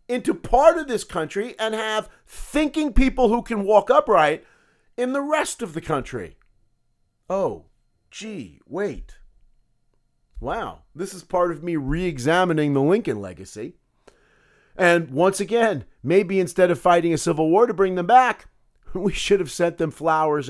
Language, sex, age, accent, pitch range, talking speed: English, male, 50-69, American, 160-220 Hz, 150 wpm